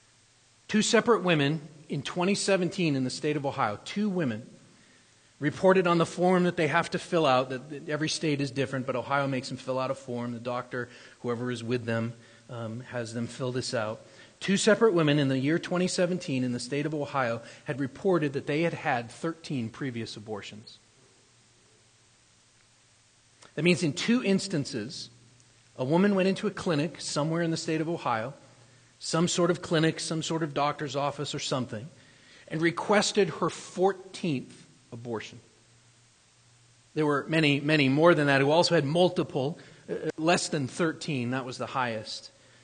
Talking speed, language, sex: 165 wpm, English, male